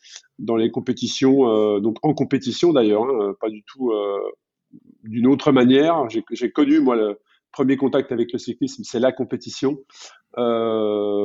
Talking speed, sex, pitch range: 160 wpm, male, 115-140 Hz